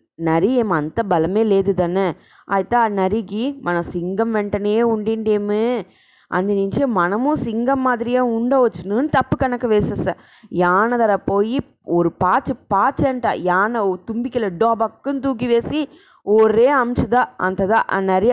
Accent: Indian